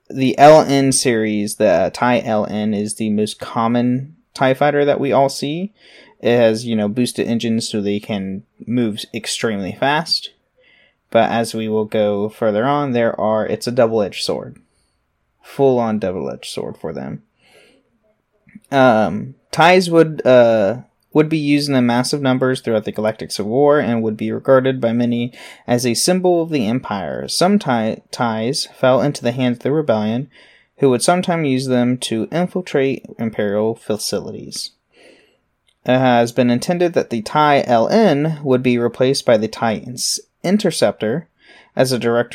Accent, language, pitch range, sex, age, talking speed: American, English, 110-140 Hz, male, 20-39, 160 wpm